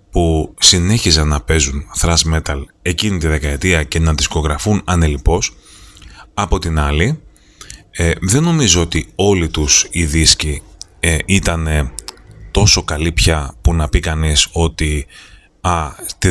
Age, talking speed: 30-49, 130 wpm